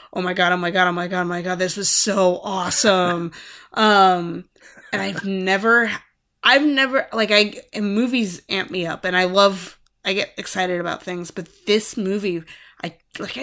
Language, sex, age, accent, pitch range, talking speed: English, female, 20-39, American, 180-220 Hz, 190 wpm